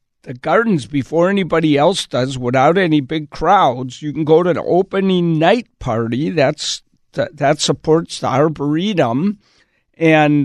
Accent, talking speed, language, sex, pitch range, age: American, 145 wpm, English, male, 140-175 Hz, 60-79